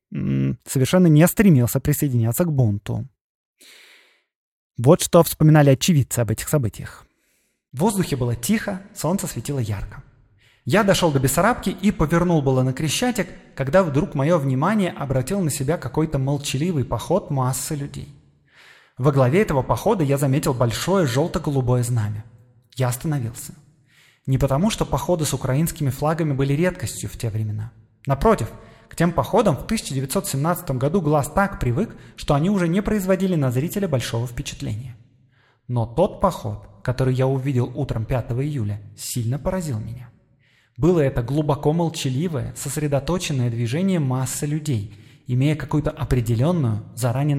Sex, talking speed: male, 135 wpm